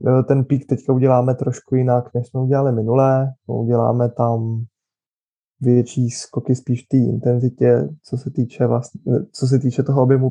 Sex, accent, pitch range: male, native, 120-130 Hz